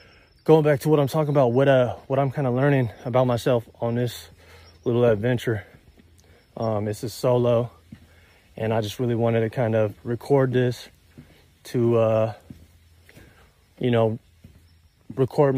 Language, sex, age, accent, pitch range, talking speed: English, male, 20-39, American, 105-130 Hz, 150 wpm